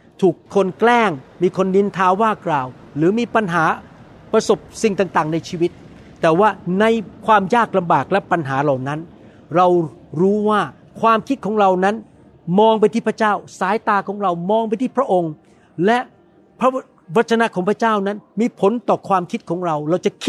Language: Thai